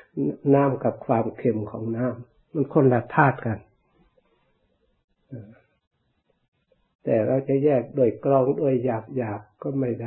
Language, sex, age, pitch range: Thai, male, 60-79, 115-140 Hz